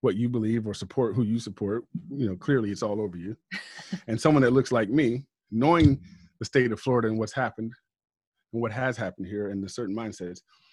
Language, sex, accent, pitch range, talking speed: English, male, American, 100-125 Hz, 215 wpm